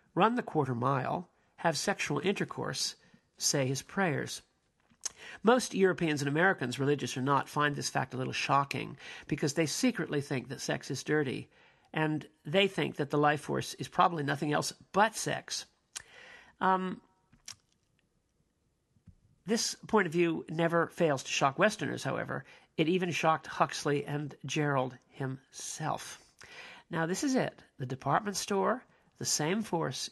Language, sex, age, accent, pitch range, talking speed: English, male, 50-69, American, 135-175 Hz, 145 wpm